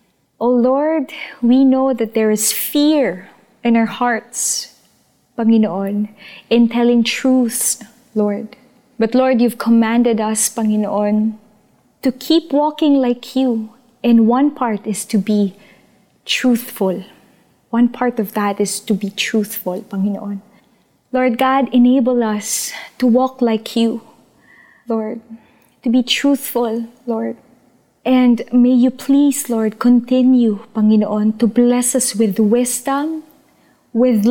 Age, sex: 20-39, female